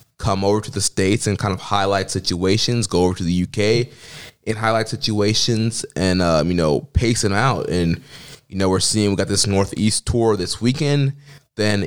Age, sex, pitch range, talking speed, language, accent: 20-39, male, 95-110 Hz, 190 wpm, English, American